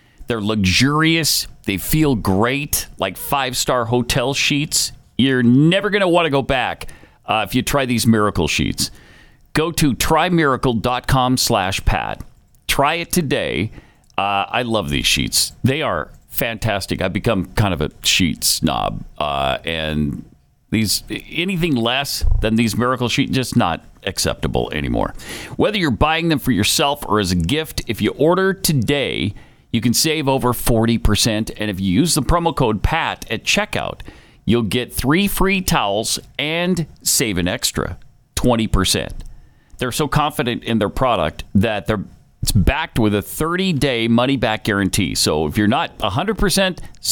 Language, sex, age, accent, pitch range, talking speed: English, male, 40-59, American, 105-155 Hz, 150 wpm